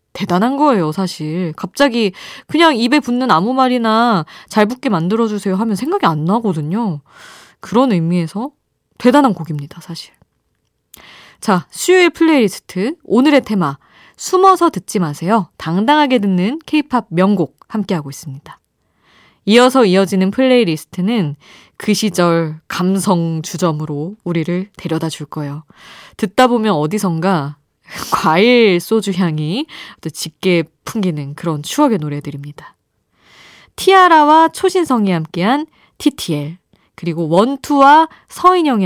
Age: 20-39